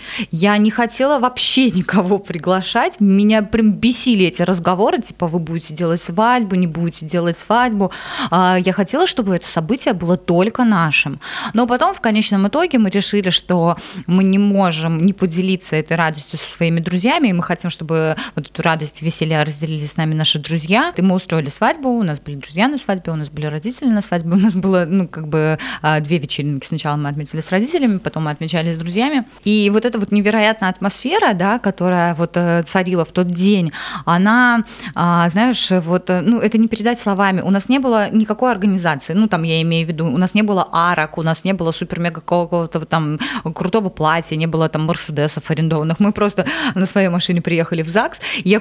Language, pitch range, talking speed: Russian, 165-215 Hz, 190 wpm